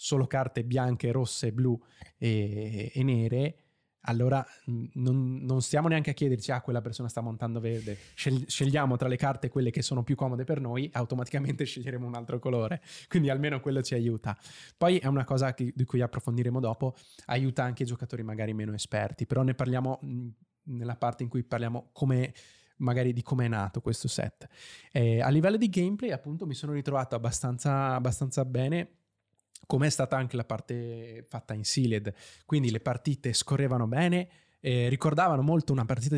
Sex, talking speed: male, 175 wpm